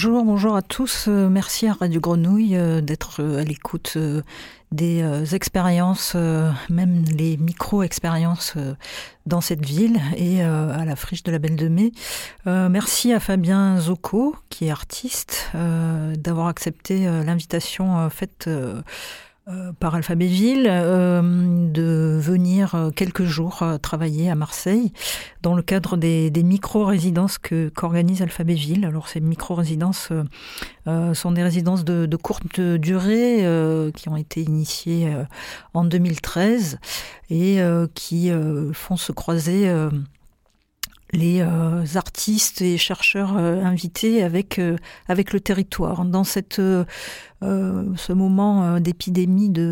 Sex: female